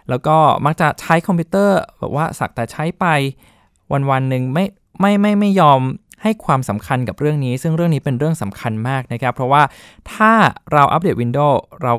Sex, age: male, 20-39